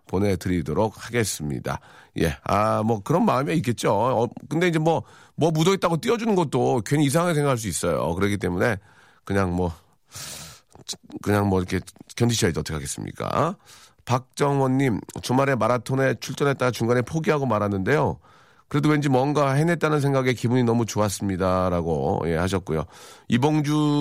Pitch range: 110-165 Hz